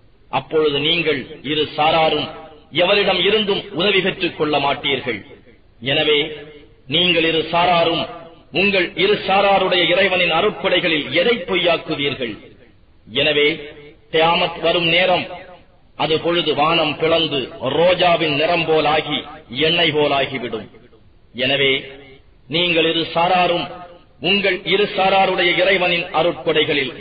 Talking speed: 90 wpm